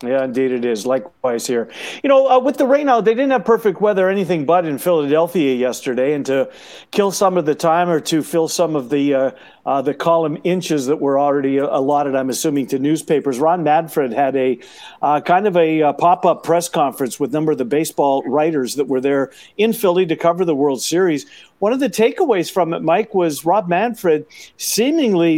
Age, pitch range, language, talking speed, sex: 50-69, 145-200 Hz, English, 210 wpm, male